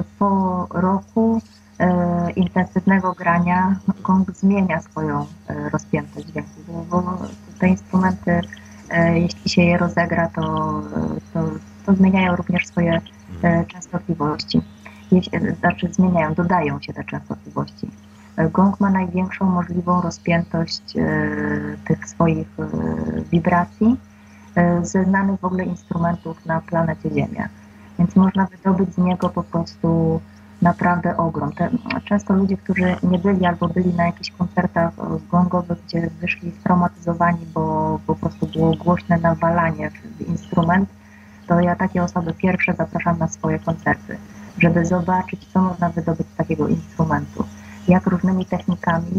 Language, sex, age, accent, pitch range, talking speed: Polish, female, 30-49, native, 165-185 Hz, 135 wpm